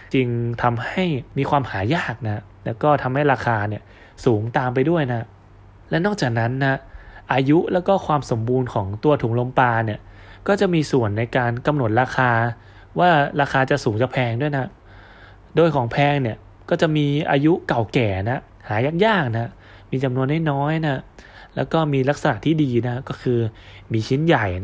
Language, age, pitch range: Thai, 20-39, 110-150 Hz